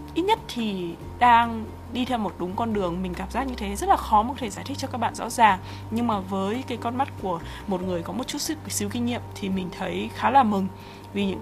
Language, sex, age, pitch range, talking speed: Vietnamese, female, 20-39, 190-235 Hz, 270 wpm